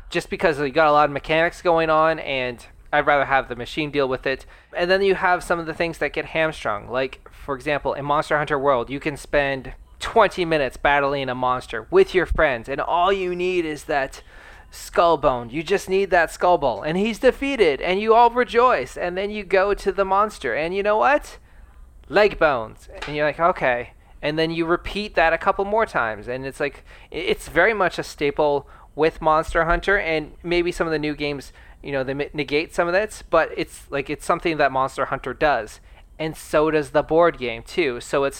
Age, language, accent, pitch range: 20-39, English, American, 135-175 Hz